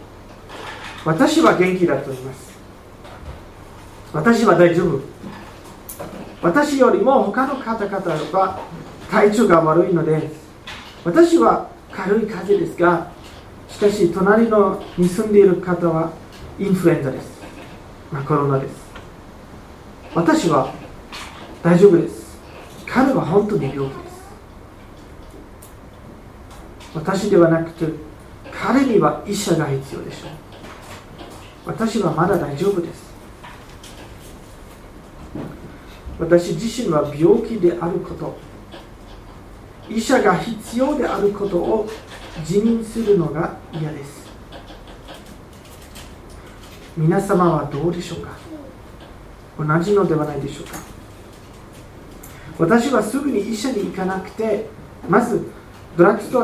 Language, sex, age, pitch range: Japanese, male, 40-59, 130-205 Hz